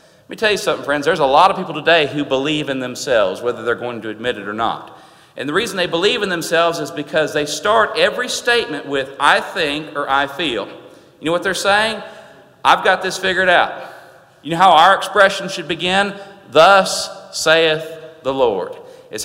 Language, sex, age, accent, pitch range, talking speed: English, male, 40-59, American, 160-200 Hz, 205 wpm